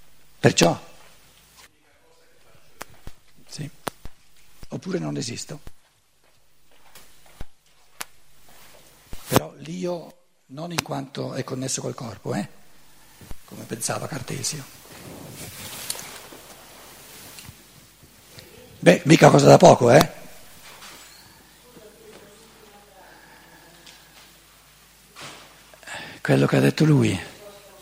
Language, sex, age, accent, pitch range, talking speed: Italian, male, 60-79, native, 105-155 Hz, 65 wpm